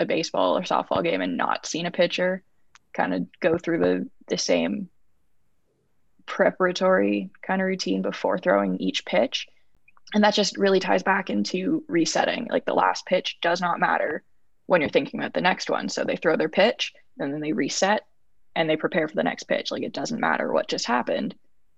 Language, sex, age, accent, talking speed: English, female, 20-39, American, 195 wpm